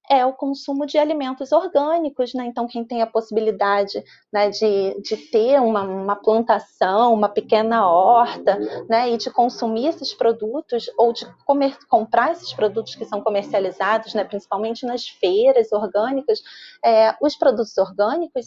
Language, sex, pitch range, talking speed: Portuguese, female, 220-295 Hz, 145 wpm